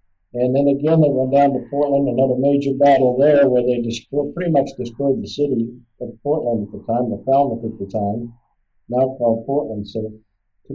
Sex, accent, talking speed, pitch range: male, American, 195 wpm, 120-150 Hz